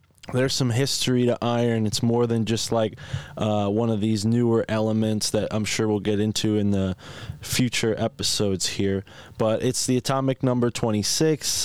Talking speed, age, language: 170 wpm, 20-39, English